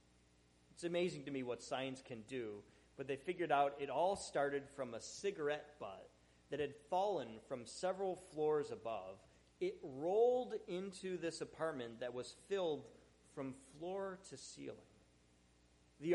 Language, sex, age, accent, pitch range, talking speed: English, male, 30-49, American, 110-180 Hz, 145 wpm